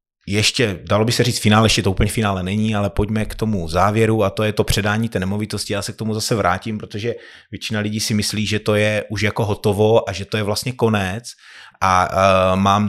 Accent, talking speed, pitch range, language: native, 230 wpm, 95-110 Hz, Czech